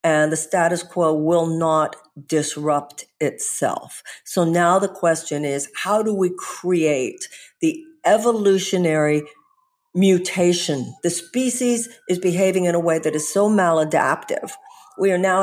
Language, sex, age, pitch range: English, female, 50-69, 160-210 Hz